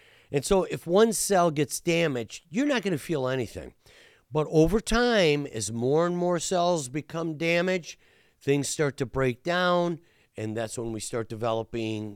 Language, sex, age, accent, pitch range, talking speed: English, male, 50-69, American, 110-155 Hz, 170 wpm